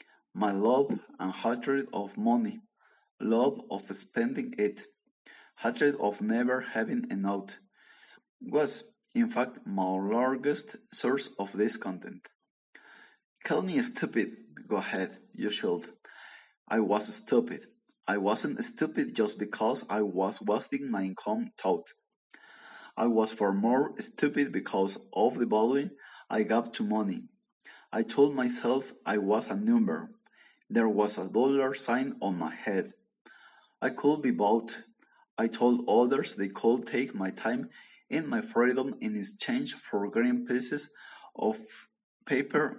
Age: 30-49